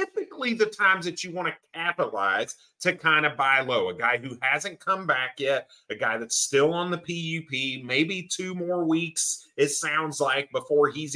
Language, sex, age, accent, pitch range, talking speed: English, male, 30-49, American, 130-185 Hz, 195 wpm